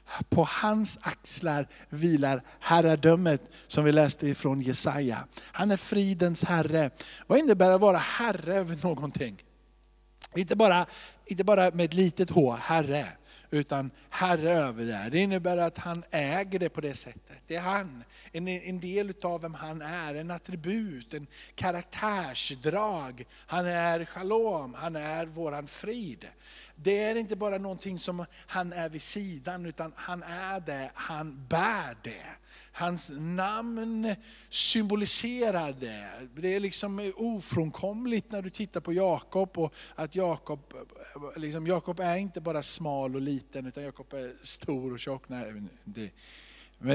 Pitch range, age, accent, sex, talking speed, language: 150-190 Hz, 50-69, native, male, 140 wpm, Swedish